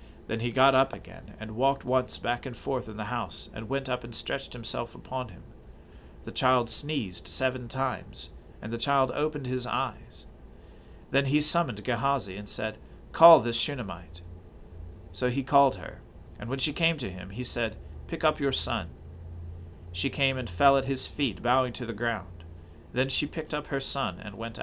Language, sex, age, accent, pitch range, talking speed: English, male, 40-59, American, 110-140 Hz, 190 wpm